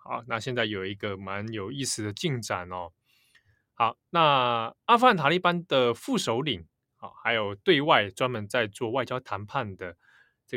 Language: Chinese